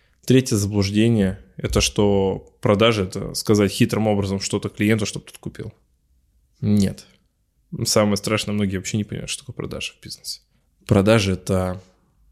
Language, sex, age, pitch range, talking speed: Russian, male, 20-39, 95-110 Hz, 135 wpm